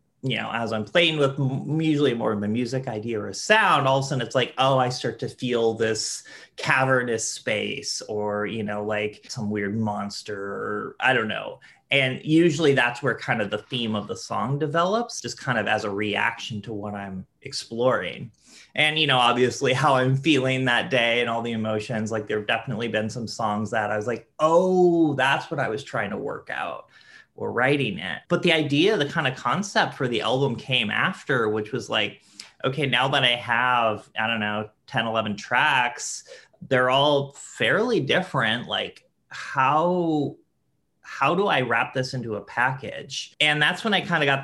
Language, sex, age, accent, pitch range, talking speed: English, male, 30-49, American, 110-140 Hz, 195 wpm